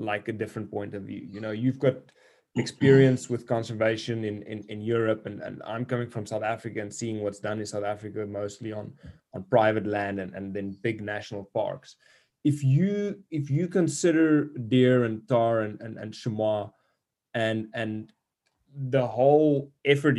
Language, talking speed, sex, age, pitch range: English, 175 wpm, male, 20-39, 105-125 Hz